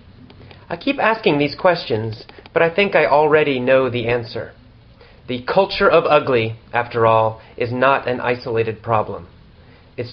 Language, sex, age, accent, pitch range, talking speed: English, male, 30-49, American, 115-155 Hz, 150 wpm